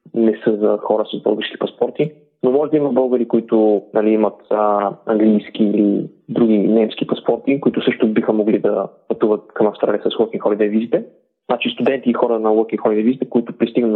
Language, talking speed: Bulgarian, 180 wpm